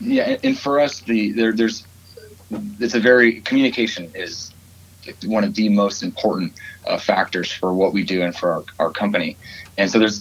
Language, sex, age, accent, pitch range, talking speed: English, male, 30-49, American, 95-110 Hz, 180 wpm